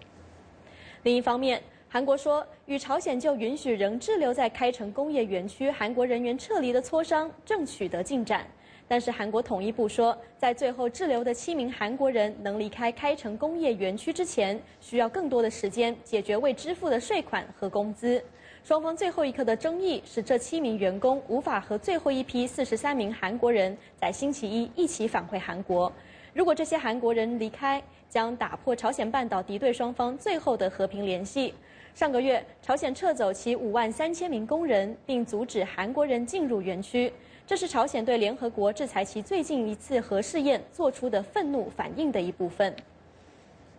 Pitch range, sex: 210-280 Hz, female